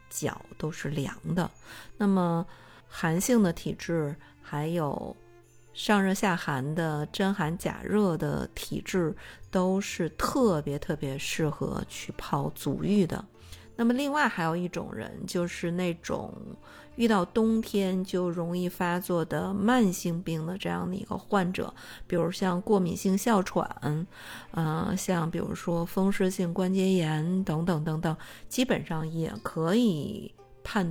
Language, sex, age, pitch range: Chinese, female, 50-69, 160-200 Hz